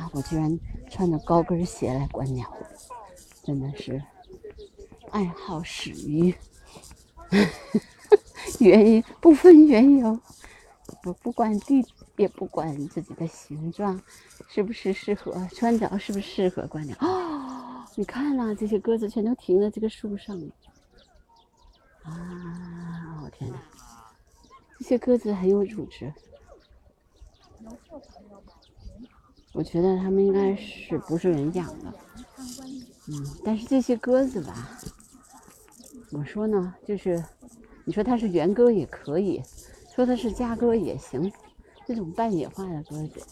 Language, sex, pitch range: Chinese, female, 165-235 Hz